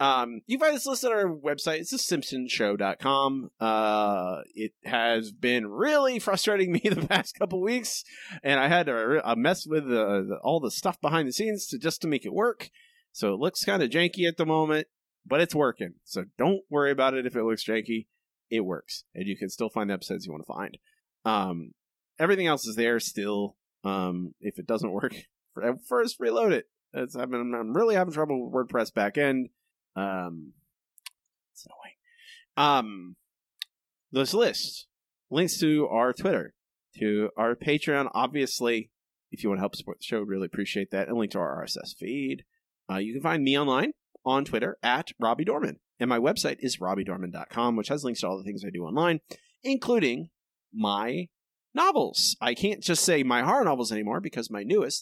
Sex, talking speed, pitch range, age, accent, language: male, 190 wpm, 110-180 Hz, 30-49, American, English